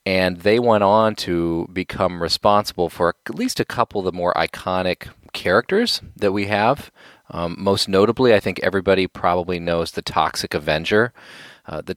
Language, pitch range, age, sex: English, 85-105 Hz, 30-49, male